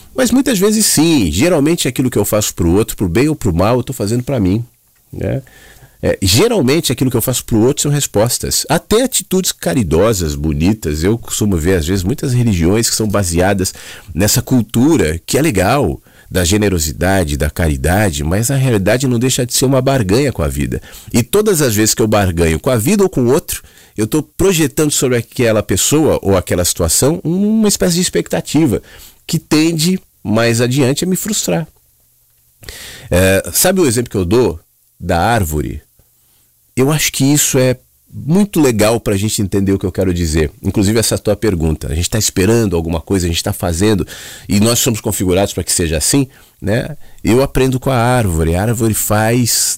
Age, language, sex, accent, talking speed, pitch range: 40-59, Portuguese, male, Brazilian, 195 wpm, 90-135 Hz